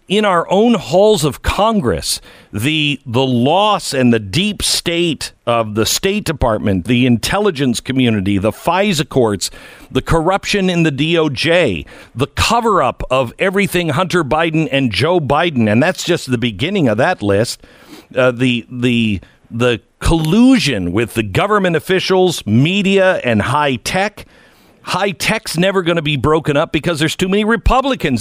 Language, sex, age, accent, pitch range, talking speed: English, male, 50-69, American, 125-185 Hz, 155 wpm